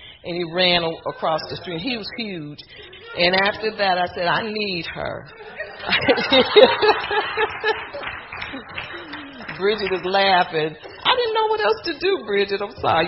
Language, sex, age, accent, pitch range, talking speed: English, female, 50-69, American, 140-210 Hz, 140 wpm